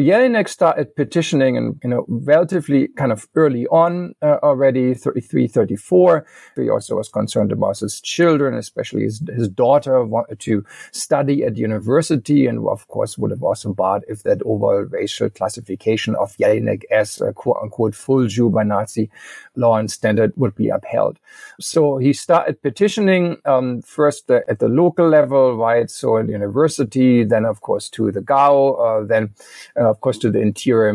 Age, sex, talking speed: 50-69, male, 175 wpm